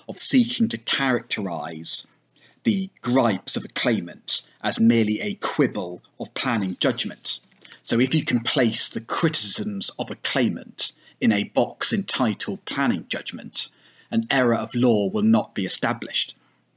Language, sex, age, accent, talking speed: English, male, 30-49, British, 140 wpm